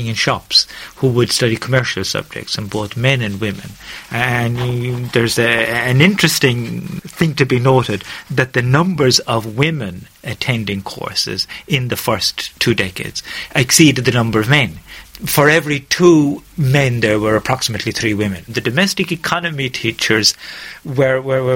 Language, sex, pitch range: English, male, 110-135 Hz